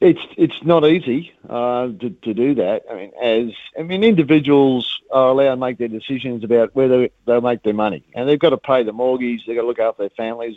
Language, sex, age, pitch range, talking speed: English, male, 50-69, 110-140 Hz, 235 wpm